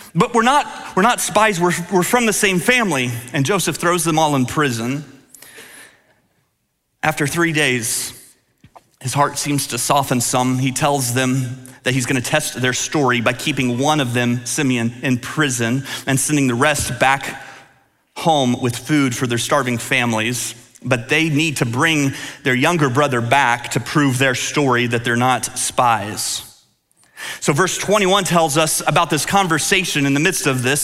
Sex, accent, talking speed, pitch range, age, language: male, American, 170 wpm, 125-155 Hz, 30-49, English